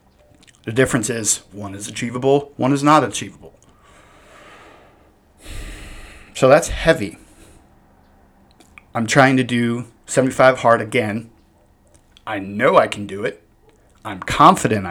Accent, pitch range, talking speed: American, 105-140 Hz, 115 wpm